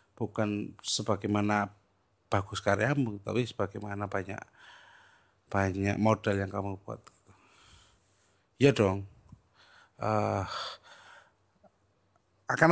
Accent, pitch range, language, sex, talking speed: native, 100-130 Hz, Indonesian, male, 75 wpm